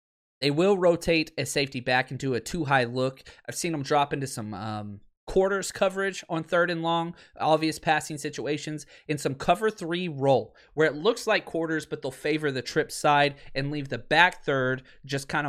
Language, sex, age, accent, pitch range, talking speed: English, male, 30-49, American, 130-185 Hz, 200 wpm